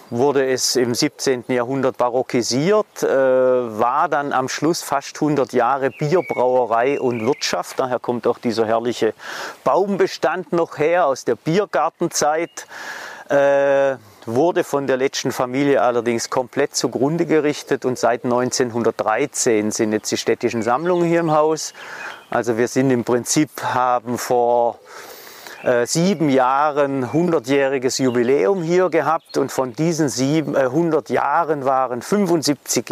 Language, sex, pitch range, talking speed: German, male, 120-155 Hz, 125 wpm